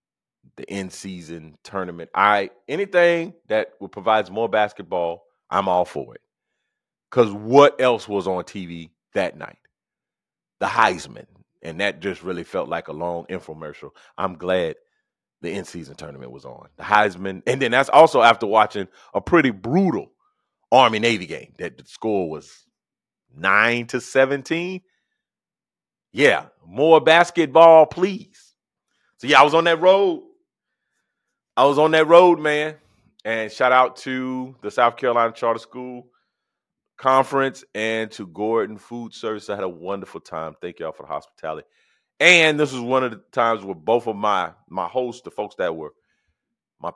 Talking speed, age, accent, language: 150 wpm, 30-49, American, English